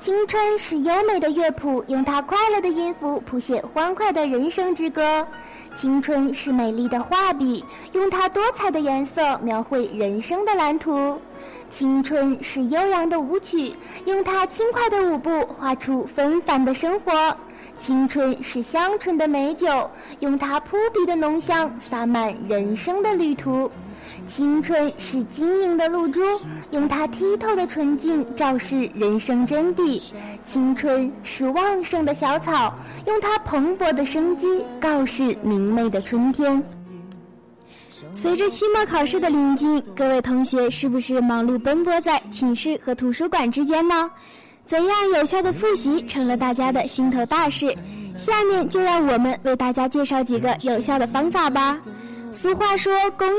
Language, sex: Chinese, female